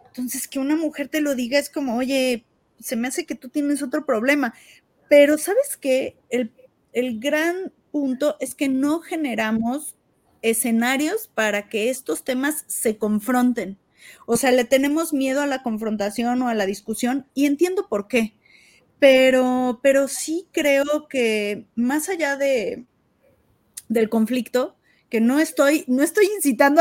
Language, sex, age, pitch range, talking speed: Spanish, female, 30-49, 235-295 Hz, 150 wpm